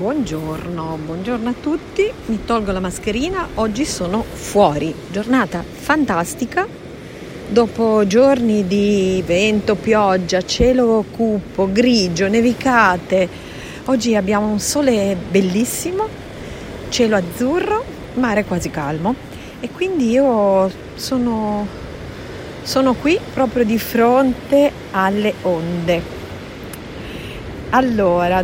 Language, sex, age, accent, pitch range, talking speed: Italian, female, 40-59, native, 195-260 Hz, 95 wpm